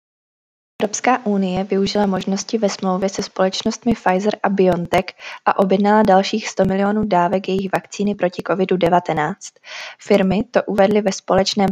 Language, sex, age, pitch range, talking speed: Czech, female, 20-39, 185-215 Hz, 135 wpm